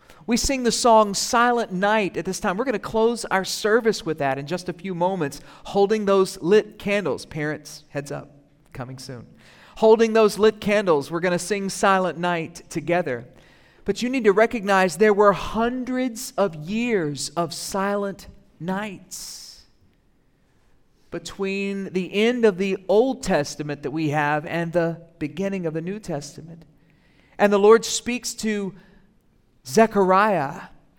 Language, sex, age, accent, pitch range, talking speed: English, male, 40-59, American, 155-210 Hz, 150 wpm